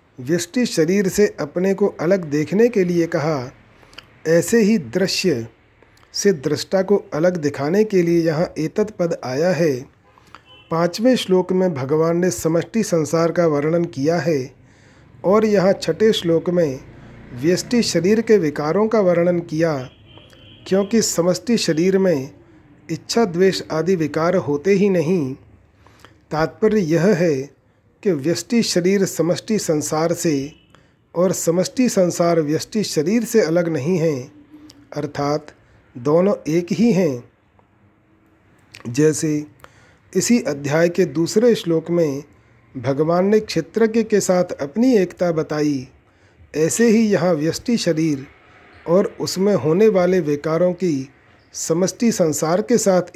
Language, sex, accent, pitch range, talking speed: Hindi, male, native, 145-190 Hz, 125 wpm